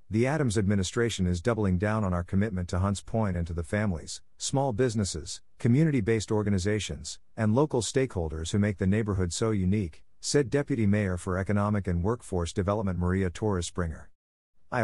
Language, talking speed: English, 160 wpm